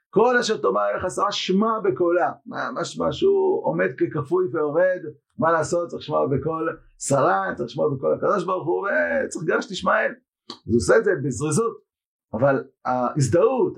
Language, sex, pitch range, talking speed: Hebrew, male, 130-205 Hz, 150 wpm